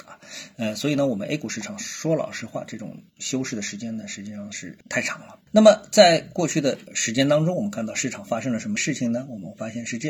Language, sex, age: Chinese, male, 50-69